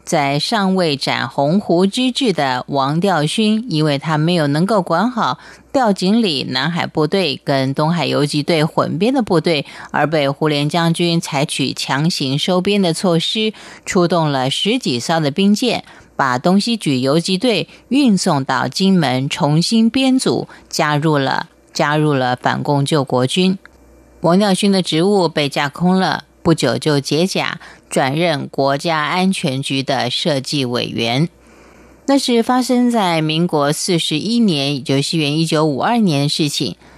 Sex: female